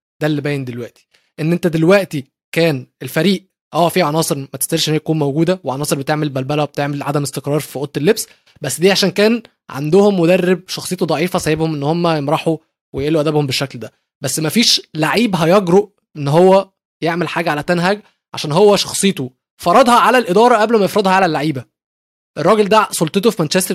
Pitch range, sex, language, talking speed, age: 150-190 Hz, male, Arabic, 175 wpm, 20-39